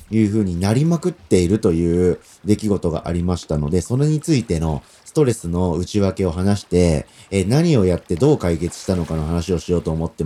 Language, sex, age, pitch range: Japanese, male, 40-59, 85-115 Hz